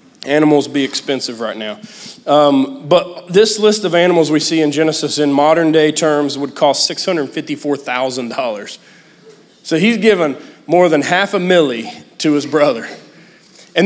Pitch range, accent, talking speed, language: 150-185 Hz, American, 145 wpm, English